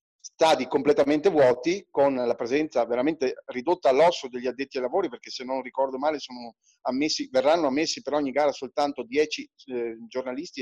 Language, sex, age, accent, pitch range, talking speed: Italian, male, 30-49, native, 135-175 Hz, 155 wpm